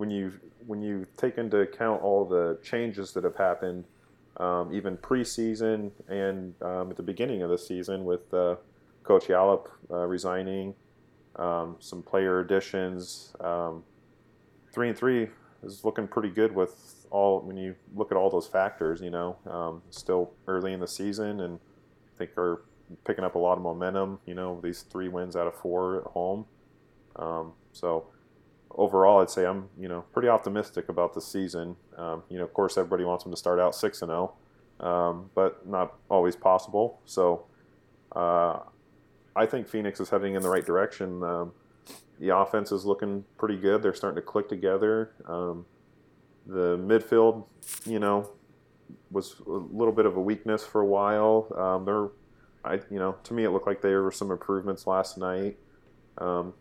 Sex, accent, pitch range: male, American, 90-105 Hz